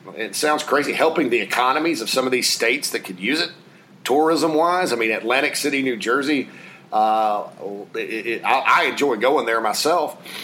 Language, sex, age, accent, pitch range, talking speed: English, male, 40-59, American, 135-185 Hz, 180 wpm